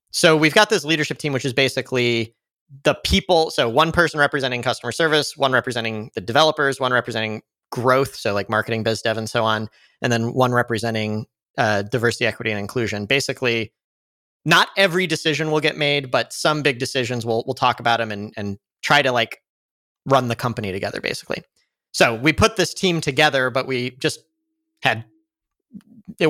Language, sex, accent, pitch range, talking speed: English, male, American, 115-155 Hz, 180 wpm